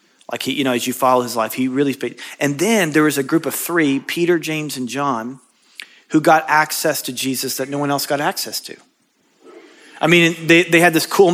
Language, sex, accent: English, male, American